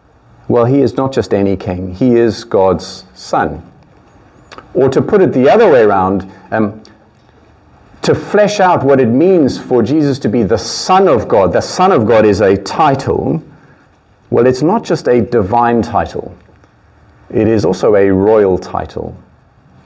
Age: 40-59